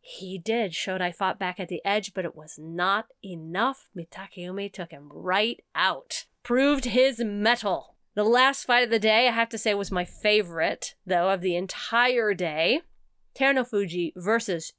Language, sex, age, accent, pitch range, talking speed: English, female, 30-49, American, 195-290 Hz, 165 wpm